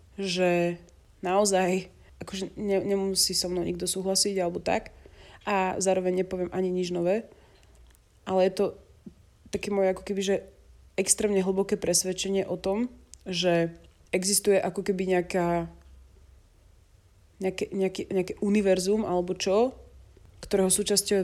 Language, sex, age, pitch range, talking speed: Slovak, female, 20-39, 180-205 Hz, 110 wpm